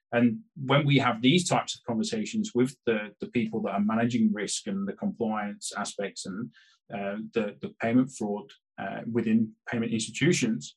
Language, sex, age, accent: English, male, 20-39, British